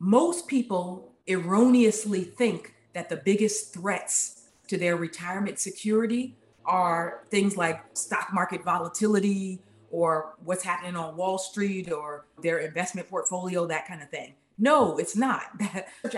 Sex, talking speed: female, 135 wpm